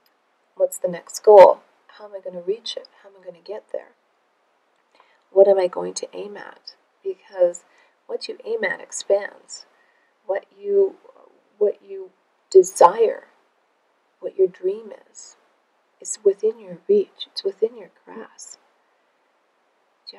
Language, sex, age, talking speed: English, female, 40-59, 140 wpm